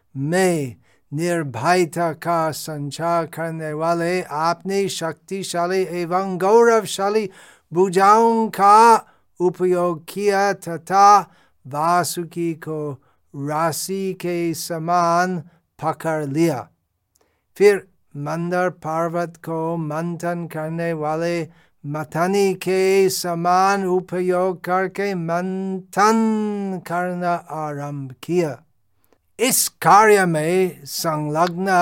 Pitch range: 160-190 Hz